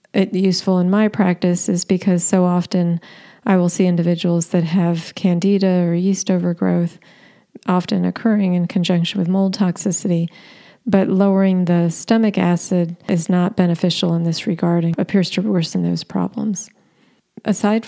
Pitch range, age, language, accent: 180-205 Hz, 40-59, English, American